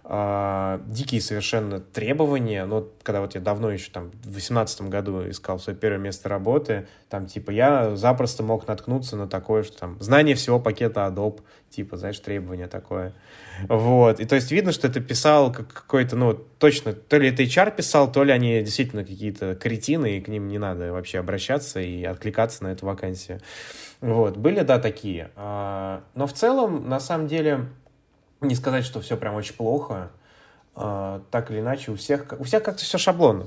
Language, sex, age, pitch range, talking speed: Russian, male, 20-39, 105-130 Hz, 170 wpm